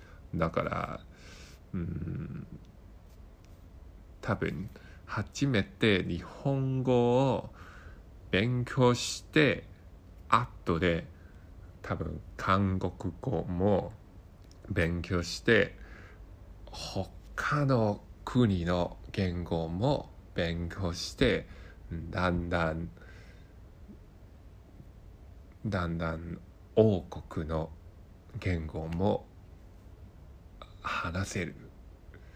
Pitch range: 85-100 Hz